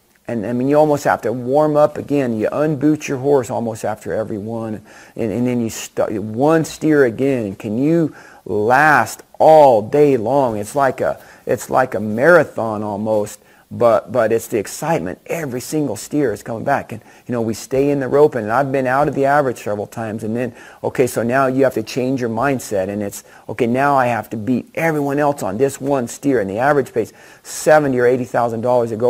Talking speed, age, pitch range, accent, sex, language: 215 wpm, 40-59, 115-150 Hz, American, male, English